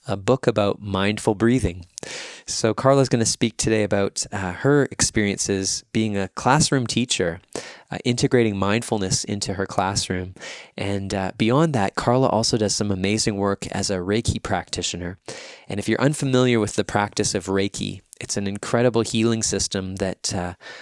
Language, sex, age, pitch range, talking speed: English, male, 20-39, 95-115 Hz, 160 wpm